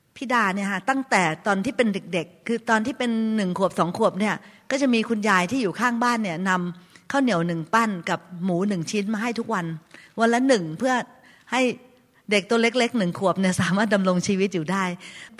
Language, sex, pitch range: Thai, female, 190-245 Hz